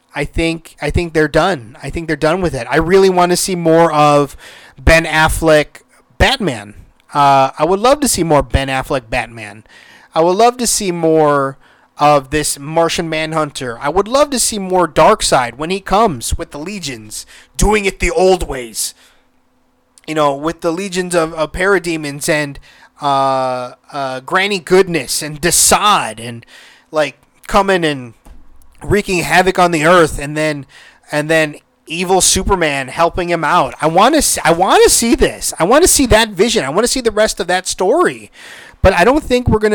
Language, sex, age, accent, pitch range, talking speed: English, male, 30-49, American, 145-190 Hz, 185 wpm